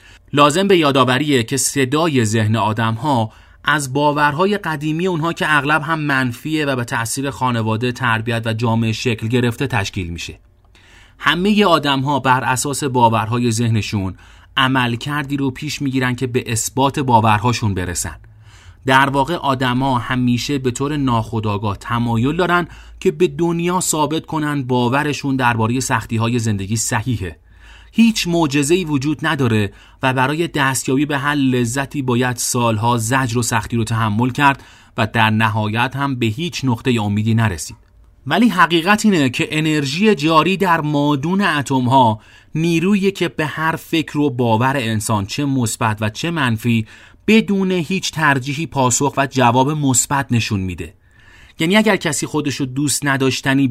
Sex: male